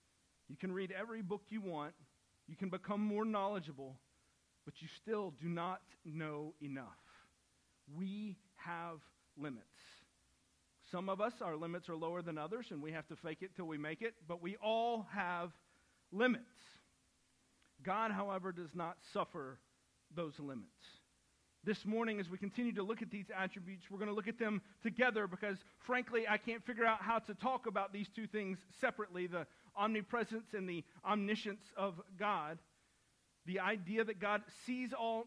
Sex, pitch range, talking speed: male, 170-215 Hz, 165 wpm